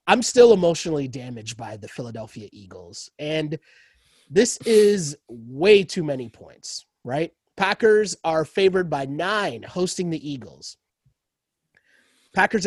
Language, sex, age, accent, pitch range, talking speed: English, male, 30-49, American, 140-175 Hz, 120 wpm